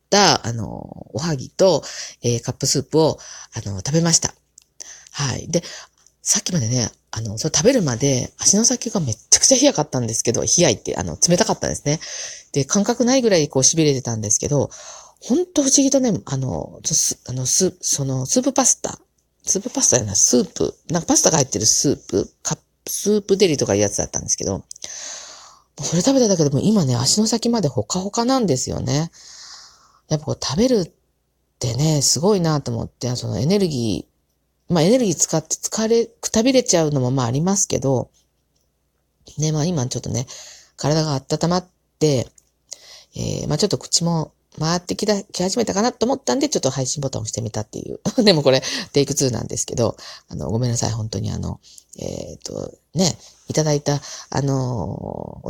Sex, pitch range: female, 125-200 Hz